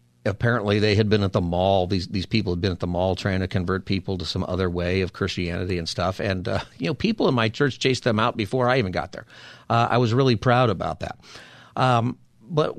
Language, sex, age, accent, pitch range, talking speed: English, male, 50-69, American, 95-125 Hz, 245 wpm